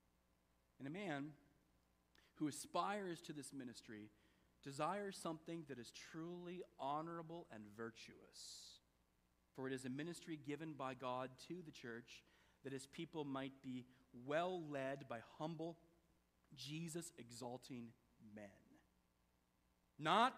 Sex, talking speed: male, 115 wpm